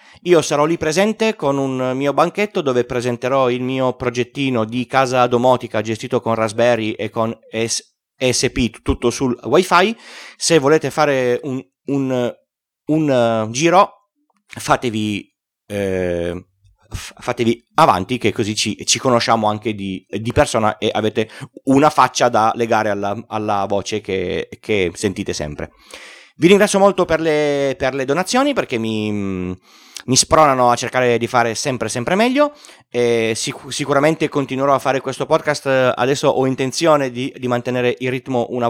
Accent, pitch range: native, 115-150 Hz